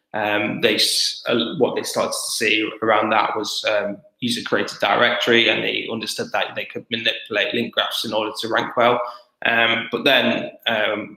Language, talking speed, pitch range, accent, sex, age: English, 175 wpm, 115-125 Hz, British, male, 10-29